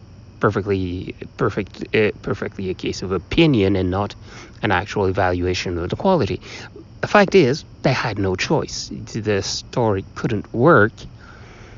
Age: 30-49